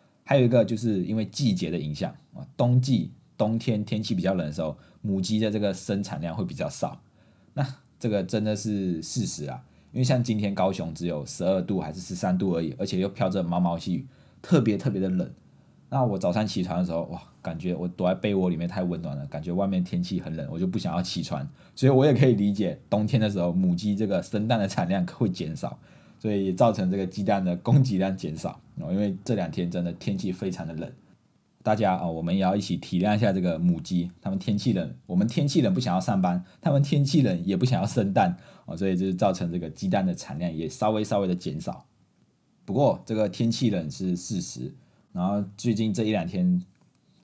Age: 20-39